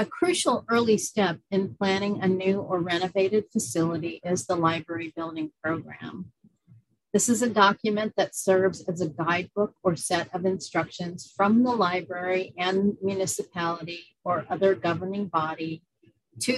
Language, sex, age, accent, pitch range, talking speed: English, female, 40-59, American, 170-205 Hz, 140 wpm